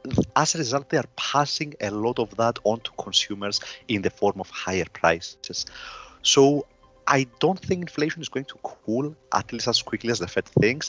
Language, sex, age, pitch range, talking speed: English, male, 30-49, 115-155 Hz, 200 wpm